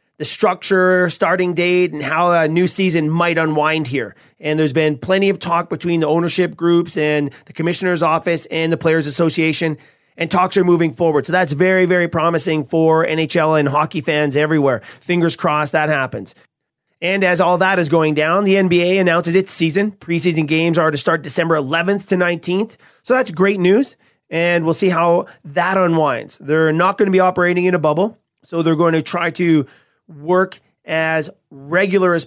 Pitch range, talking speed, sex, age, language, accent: 155-180 Hz, 185 wpm, male, 30-49, English, American